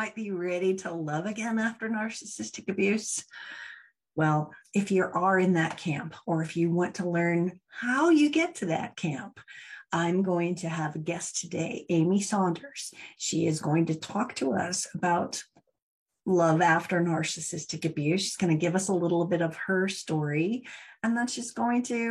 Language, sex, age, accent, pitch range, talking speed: English, female, 40-59, American, 165-225 Hz, 175 wpm